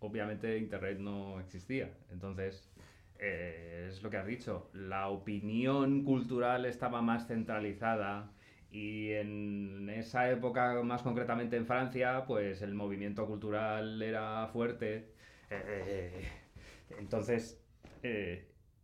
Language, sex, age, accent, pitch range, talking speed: Spanish, male, 20-39, Spanish, 100-125 Hz, 115 wpm